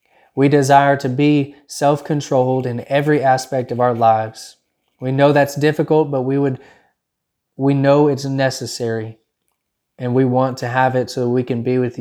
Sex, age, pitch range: male, 20-39, 120-140 Hz